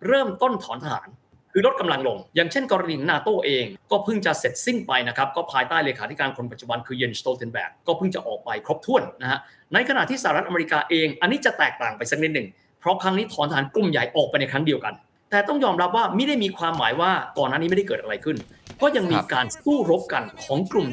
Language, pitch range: Thai, 135-205 Hz